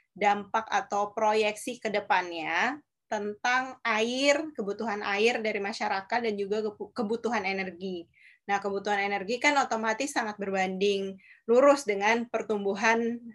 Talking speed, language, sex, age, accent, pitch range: 110 wpm, Indonesian, female, 20-39, native, 200-235 Hz